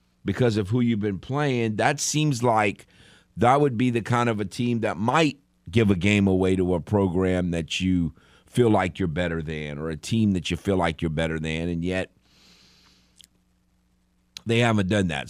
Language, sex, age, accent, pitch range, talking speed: English, male, 50-69, American, 80-95 Hz, 190 wpm